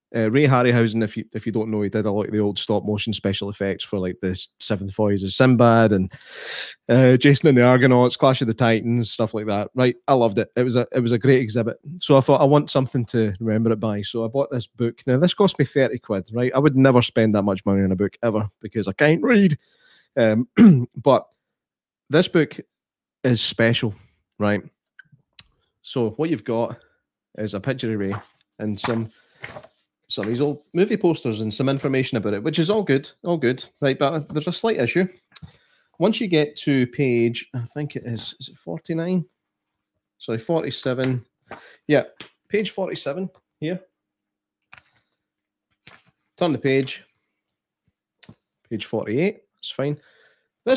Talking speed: 165 wpm